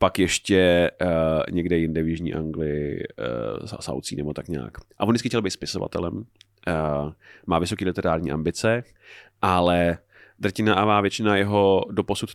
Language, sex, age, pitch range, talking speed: Czech, male, 30-49, 95-110 Hz, 150 wpm